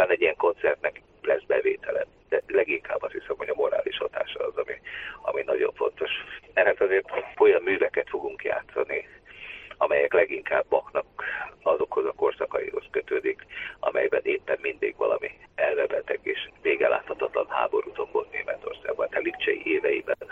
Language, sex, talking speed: Hungarian, male, 135 wpm